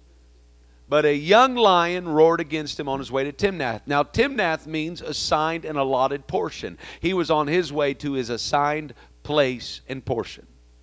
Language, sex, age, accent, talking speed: English, male, 40-59, American, 165 wpm